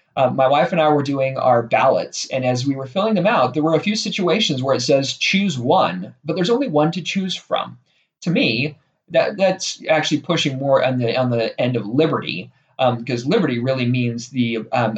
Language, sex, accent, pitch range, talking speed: English, male, American, 130-170 Hz, 215 wpm